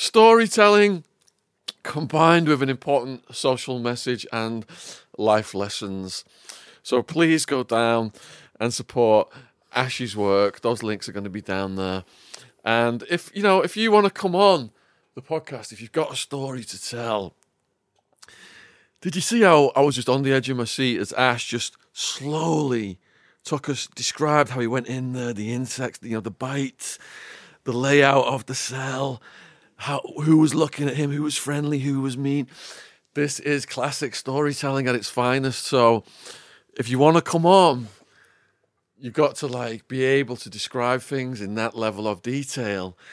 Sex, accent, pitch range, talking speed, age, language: male, British, 115-160 Hz, 170 wpm, 30-49, English